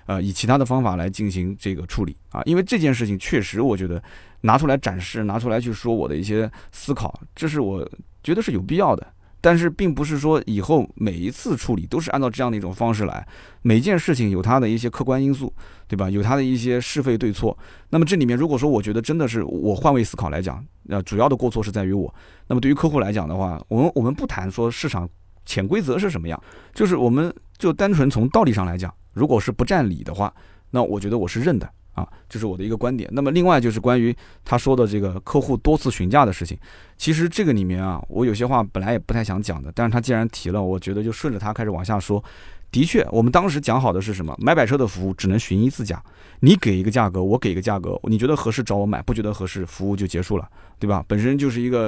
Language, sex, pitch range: Chinese, male, 95-130 Hz